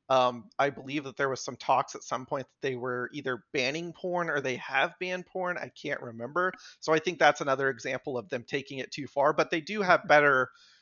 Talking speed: 235 wpm